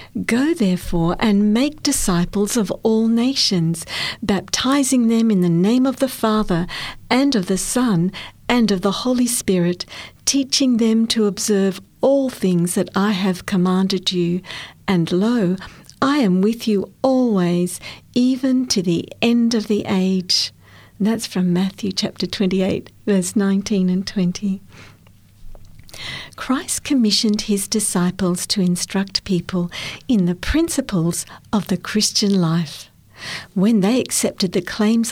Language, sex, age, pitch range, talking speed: English, female, 50-69, 180-230 Hz, 135 wpm